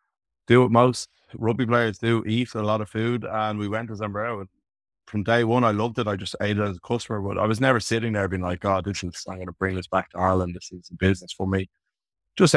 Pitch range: 95-110 Hz